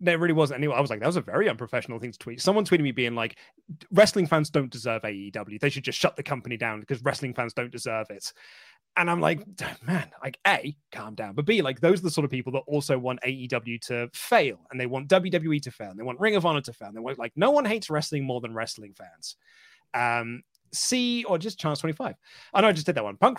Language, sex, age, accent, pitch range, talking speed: English, male, 30-49, British, 120-160 Hz, 260 wpm